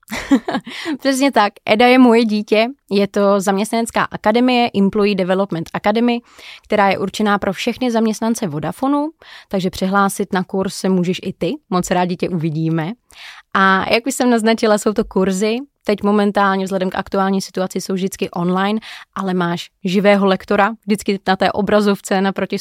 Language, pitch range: Czech, 180-215 Hz